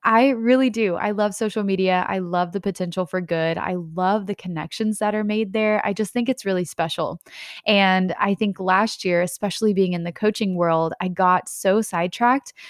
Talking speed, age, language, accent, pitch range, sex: 200 wpm, 20-39, English, American, 180-225 Hz, female